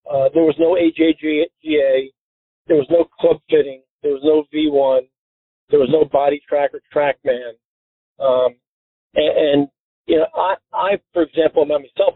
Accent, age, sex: American, 40-59, male